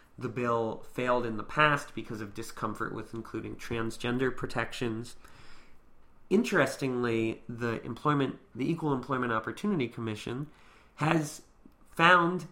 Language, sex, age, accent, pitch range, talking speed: English, male, 30-49, American, 115-140 Hz, 110 wpm